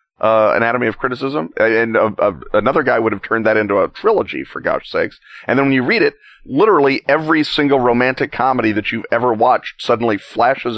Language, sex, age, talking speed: English, male, 40-59, 205 wpm